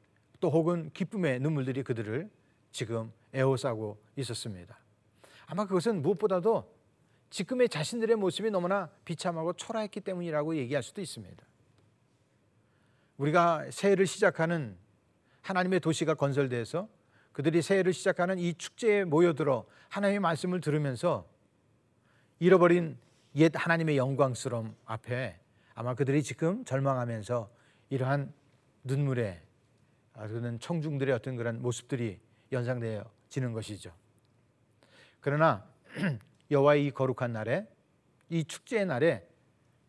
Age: 40-59